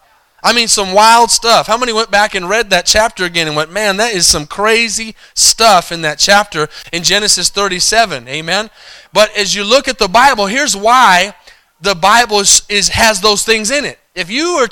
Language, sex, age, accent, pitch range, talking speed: English, male, 20-39, American, 190-240 Hz, 205 wpm